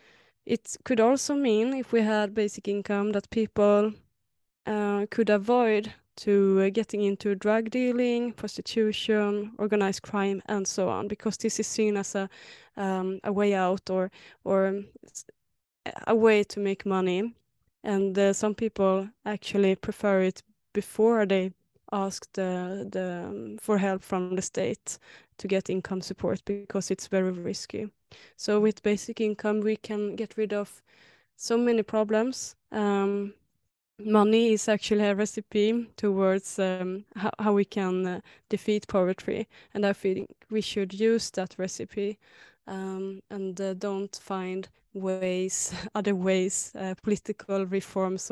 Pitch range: 190-215 Hz